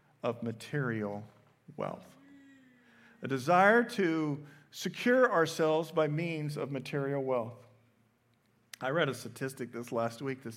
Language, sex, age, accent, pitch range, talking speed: English, male, 50-69, American, 110-145 Hz, 120 wpm